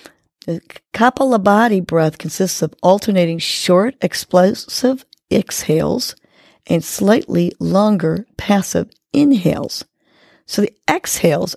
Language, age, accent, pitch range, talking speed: English, 50-69, American, 175-230 Hz, 90 wpm